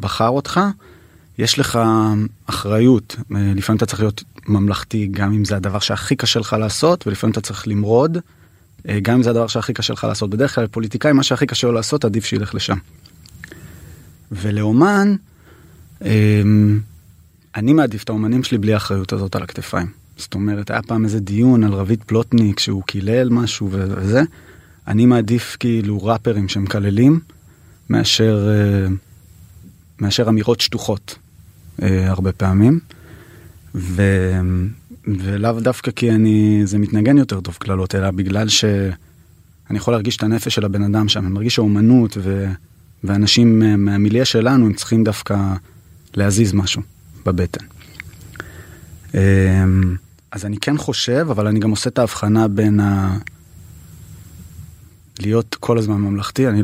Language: Hebrew